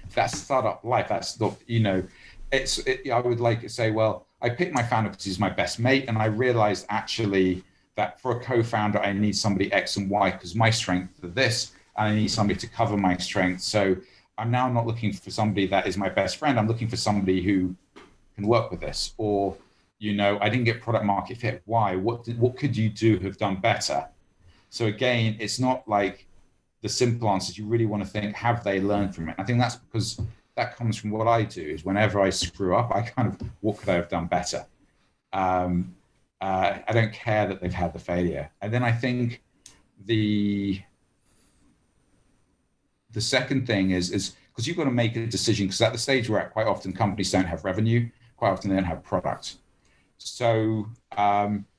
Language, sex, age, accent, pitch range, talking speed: English, male, 40-59, British, 95-115 Hz, 210 wpm